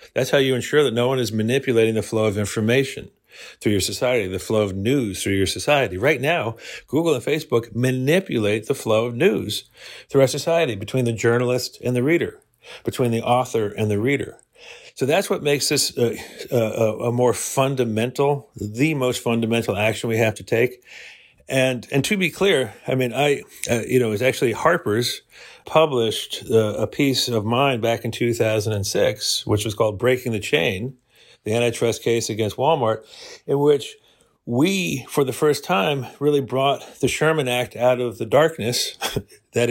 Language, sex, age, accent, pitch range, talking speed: English, male, 50-69, American, 110-135 Hz, 175 wpm